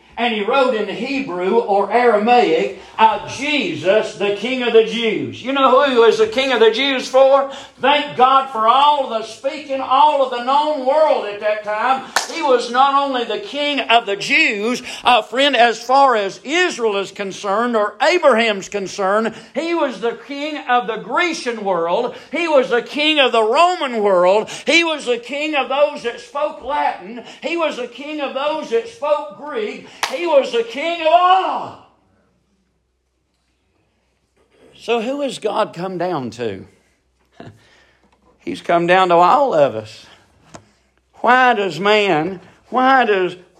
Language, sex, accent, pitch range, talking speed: English, male, American, 205-270 Hz, 165 wpm